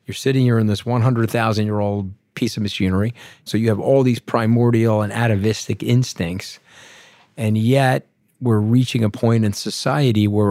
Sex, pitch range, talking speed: male, 105-120 Hz, 155 wpm